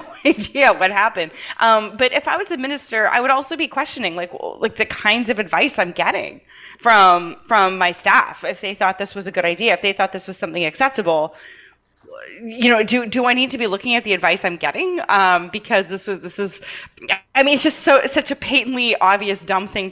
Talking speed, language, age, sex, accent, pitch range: 220 wpm, English, 20-39, female, American, 185-250 Hz